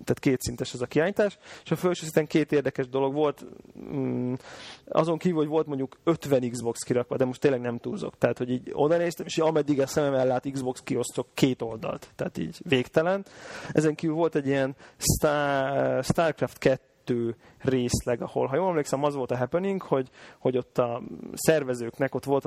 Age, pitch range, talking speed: 30-49, 130-160 Hz, 180 wpm